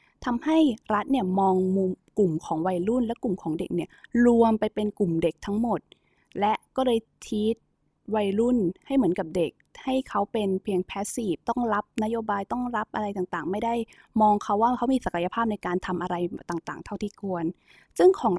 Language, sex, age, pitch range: Thai, female, 20-39, 185-245 Hz